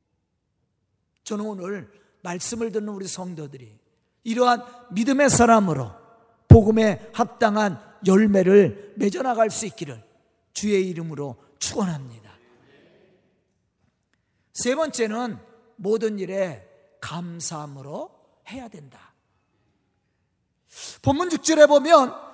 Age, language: 40-59, Korean